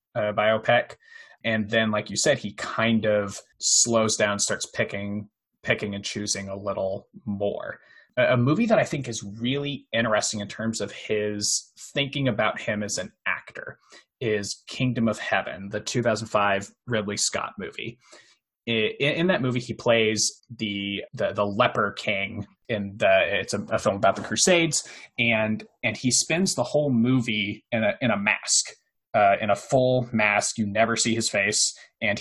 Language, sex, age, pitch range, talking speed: English, male, 20-39, 105-120 Hz, 170 wpm